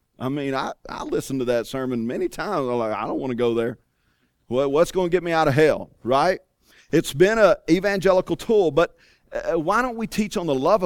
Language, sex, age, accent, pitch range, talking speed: English, male, 40-59, American, 135-175 Hz, 220 wpm